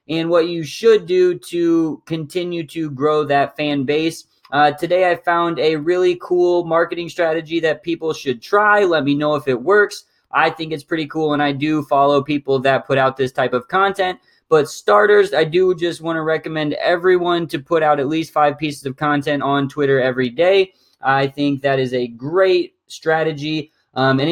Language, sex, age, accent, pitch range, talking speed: English, male, 20-39, American, 140-180 Hz, 190 wpm